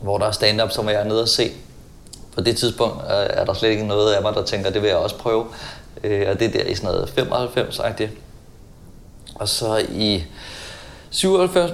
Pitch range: 100-120 Hz